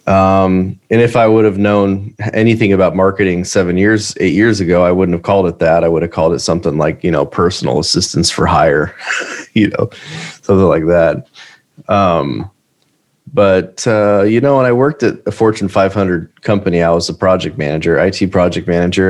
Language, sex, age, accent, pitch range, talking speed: English, male, 30-49, American, 90-110 Hz, 190 wpm